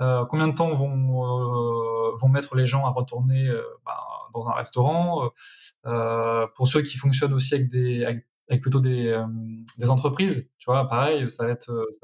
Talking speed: 195 wpm